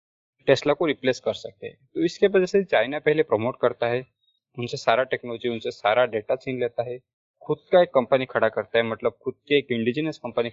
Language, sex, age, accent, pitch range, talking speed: Hindi, male, 20-39, native, 120-165 Hz, 210 wpm